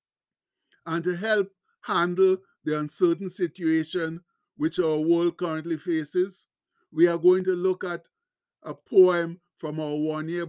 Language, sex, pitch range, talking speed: English, male, 160-195 Hz, 130 wpm